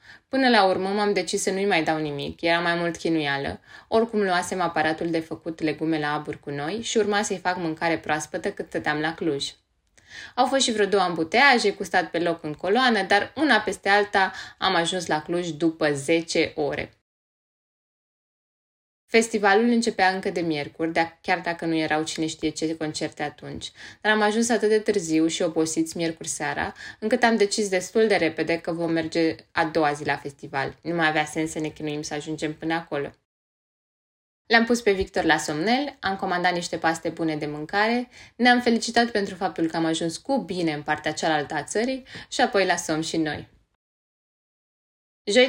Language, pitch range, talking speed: Romanian, 160-205 Hz, 185 wpm